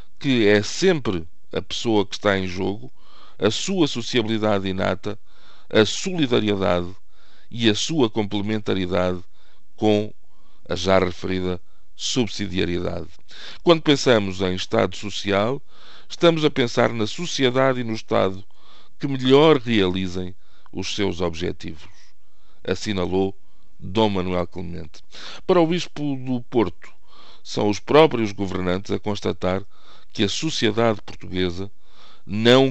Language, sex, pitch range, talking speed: Portuguese, male, 95-115 Hz, 115 wpm